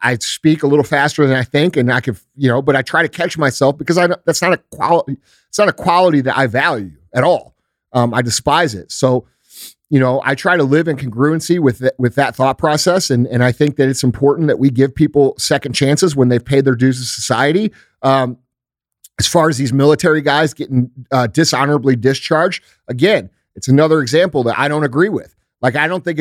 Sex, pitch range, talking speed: male, 130-160 Hz, 220 wpm